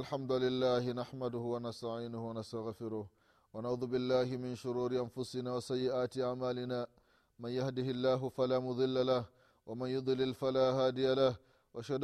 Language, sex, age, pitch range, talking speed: Swahili, male, 30-49, 115-135 Hz, 120 wpm